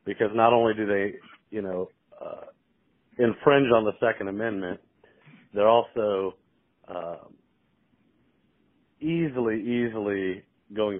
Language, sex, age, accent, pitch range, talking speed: English, male, 40-59, American, 95-115 Hz, 105 wpm